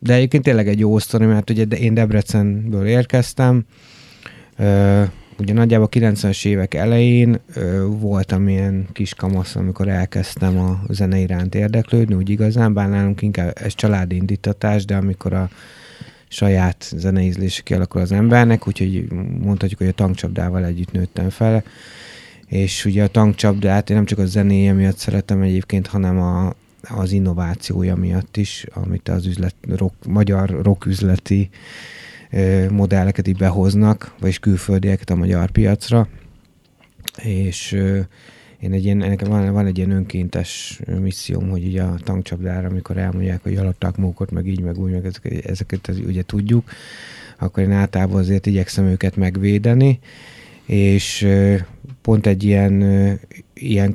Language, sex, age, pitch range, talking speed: Hungarian, male, 30-49, 95-105 Hz, 135 wpm